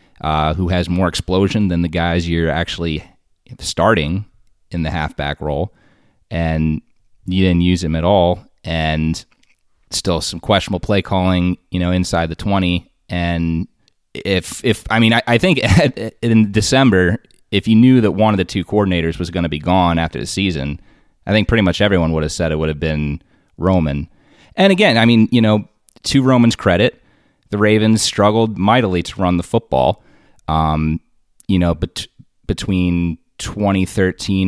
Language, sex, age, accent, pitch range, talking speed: English, male, 30-49, American, 85-100 Hz, 165 wpm